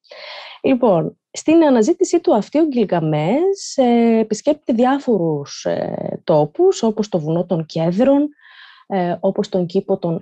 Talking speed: 110 wpm